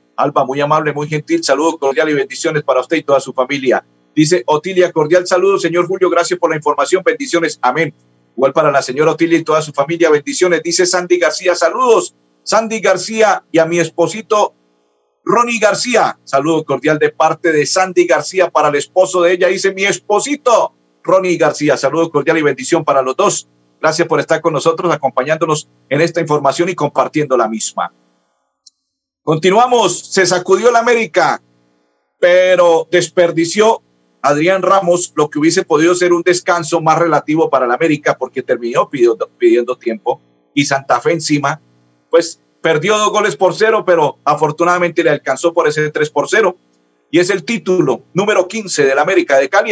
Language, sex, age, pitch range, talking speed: Spanish, male, 50-69, 140-185 Hz, 170 wpm